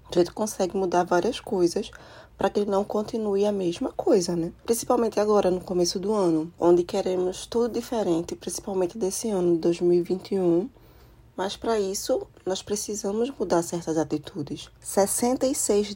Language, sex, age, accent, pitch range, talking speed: Portuguese, female, 20-39, Brazilian, 175-220 Hz, 145 wpm